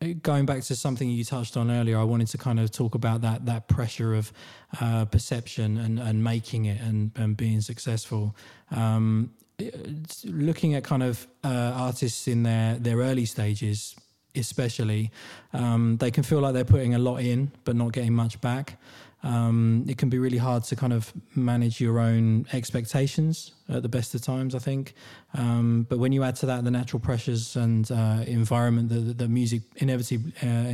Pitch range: 115-130 Hz